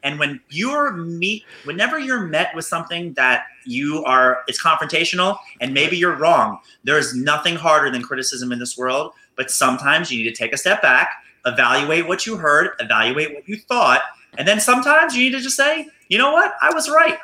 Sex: male